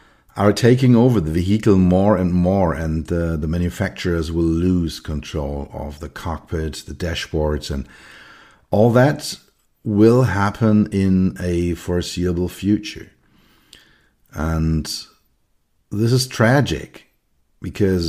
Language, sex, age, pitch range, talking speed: English, male, 50-69, 80-95 Hz, 115 wpm